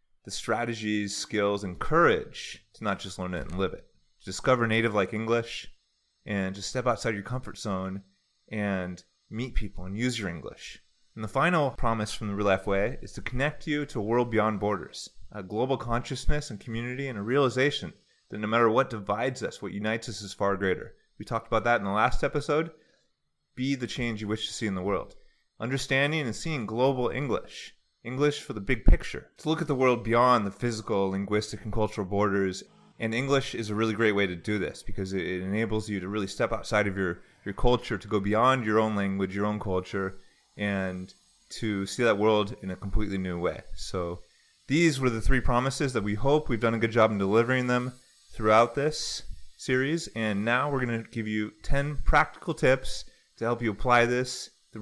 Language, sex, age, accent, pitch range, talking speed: English, male, 30-49, American, 100-125 Hz, 205 wpm